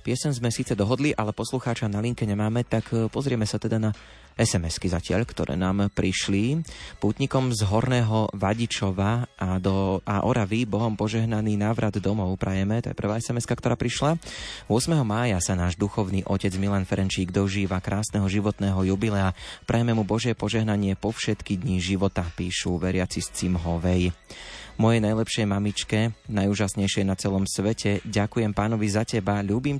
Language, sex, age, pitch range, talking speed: Slovak, male, 30-49, 95-115 Hz, 150 wpm